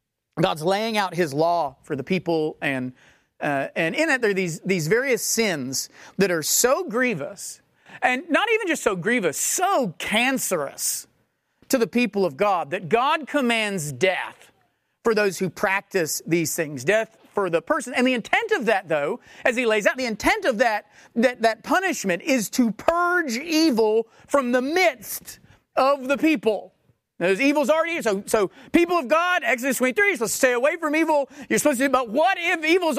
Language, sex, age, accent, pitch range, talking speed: English, male, 40-59, American, 195-305 Hz, 185 wpm